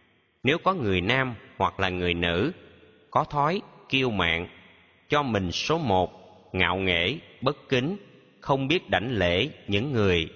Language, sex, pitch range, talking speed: Vietnamese, male, 90-135 Hz, 150 wpm